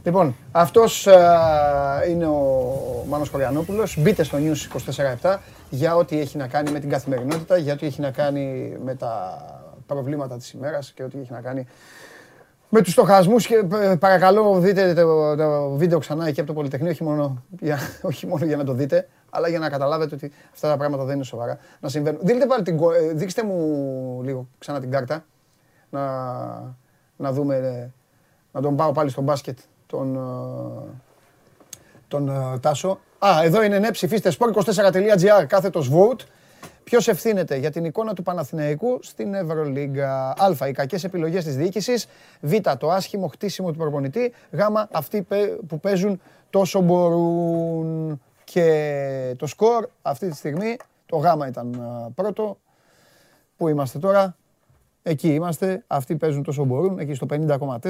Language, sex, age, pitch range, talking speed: Greek, male, 30-49, 140-185 Hz, 135 wpm